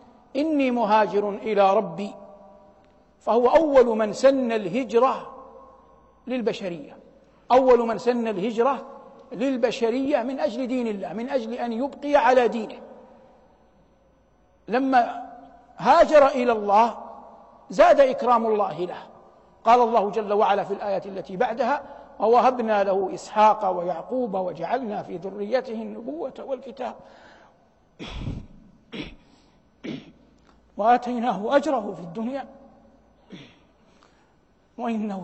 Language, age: Arabic, 60-79